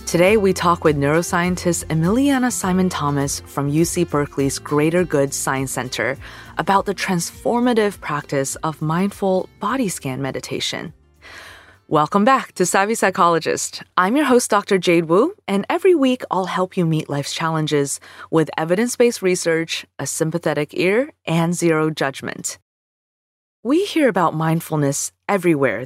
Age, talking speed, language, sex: 20-39, 130 wpm, English, female